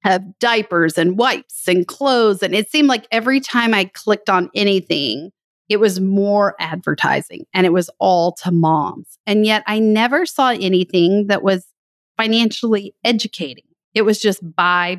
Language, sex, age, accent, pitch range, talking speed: English, female, 40-59, American, 175-220 Hz, 160 wpm